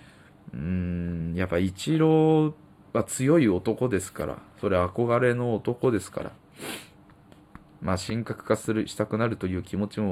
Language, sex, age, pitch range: Japanese, male, 20-39, 90-115 Hz